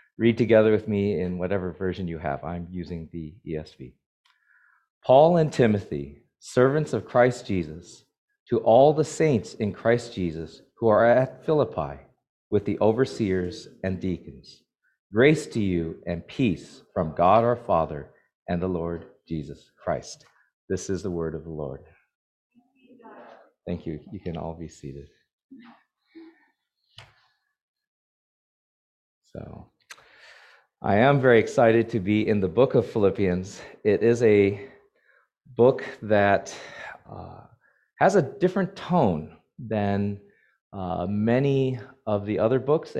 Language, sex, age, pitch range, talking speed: English, male, 40-59, 90-135 Hz, 130 wpm